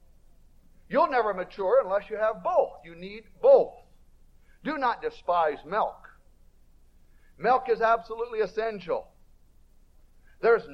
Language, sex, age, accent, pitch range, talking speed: English, male, 60-79, American, 200-280 Hz, 105 wpm